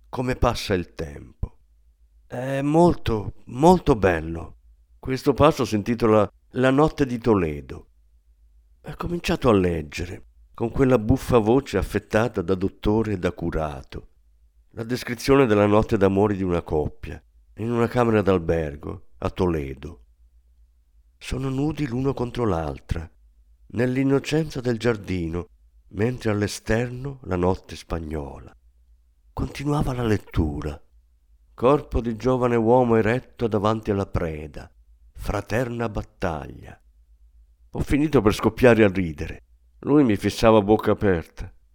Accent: native